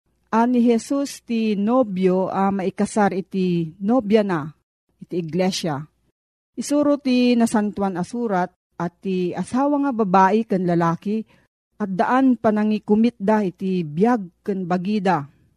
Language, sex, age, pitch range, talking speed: Filipino, female, 40-59, 190-240 Hz, 125 wpm